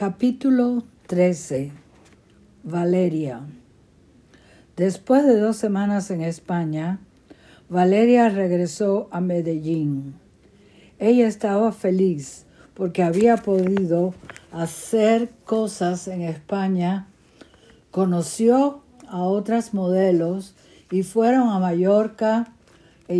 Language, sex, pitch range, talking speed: Spanish, female, 170-210 Hz, 85 wpm